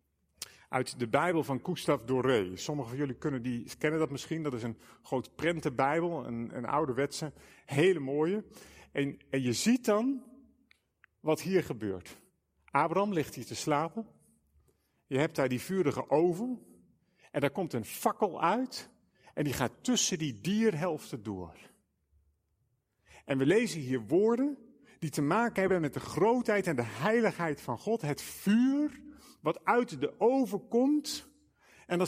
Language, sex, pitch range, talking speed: Dutch, male, 140-230 Hz, 150 wpm